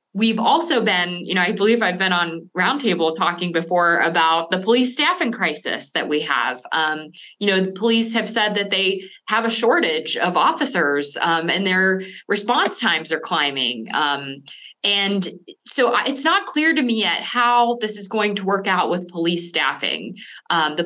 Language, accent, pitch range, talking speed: English, American, 170-220 Hz, 180 wpm